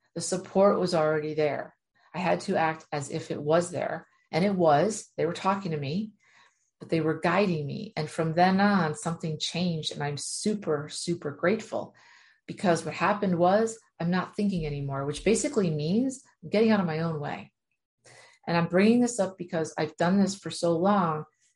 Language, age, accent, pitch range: English, 40-59, American, 155-200 Hz